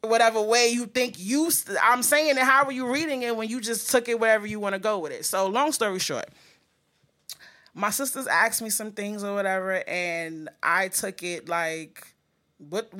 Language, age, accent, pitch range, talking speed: English, 20-39, American, 190-240 Hz, 200 wpm